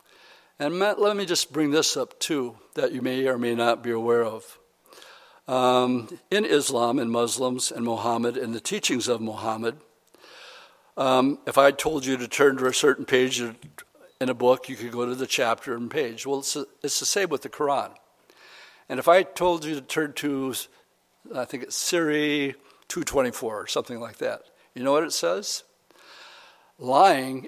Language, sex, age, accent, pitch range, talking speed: English, male, 60-79, American, 120-145 Hz, 180 wpm